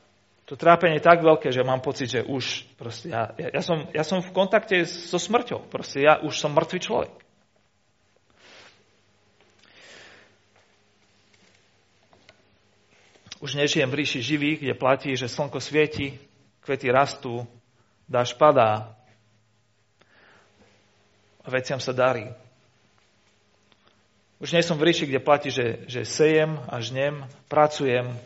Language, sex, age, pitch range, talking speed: Slovak, male, 40-59, 105-160 Hz, 120 wpm